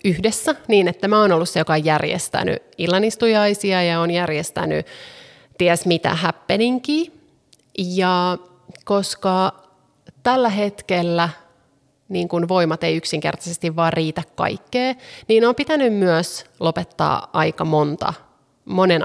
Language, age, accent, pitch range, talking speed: Finnish, 30-49, native, 160-210 Hz, 115 wpm